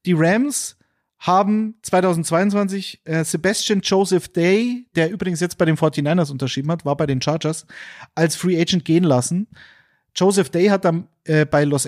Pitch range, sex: 150-195 Hz, male